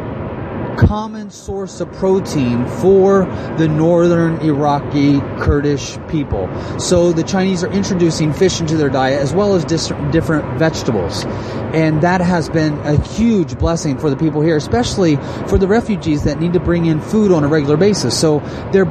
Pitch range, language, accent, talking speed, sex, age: 135-175 Hz, English, American, 160 wpm, male, 30-49